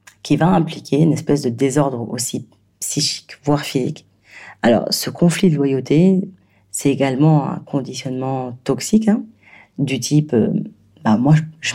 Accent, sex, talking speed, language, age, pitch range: French, female, 145 wpm, French, 40-59, 125-160 Hz